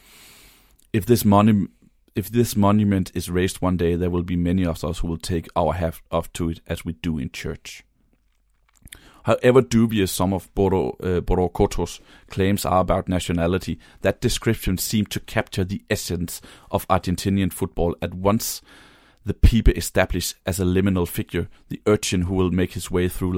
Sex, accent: male, native